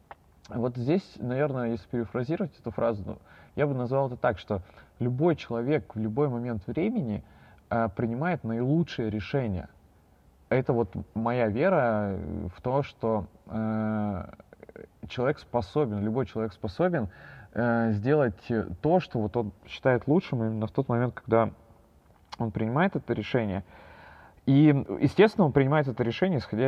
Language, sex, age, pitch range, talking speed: Russian, male, 20-39, 105-130 Hz, 135 wpm